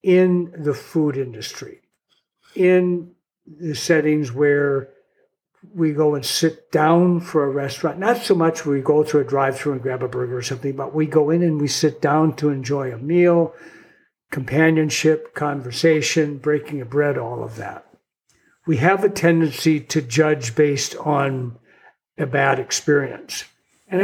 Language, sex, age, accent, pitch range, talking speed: English, male, 60-79, American, 140-165 Hz, 150 wpm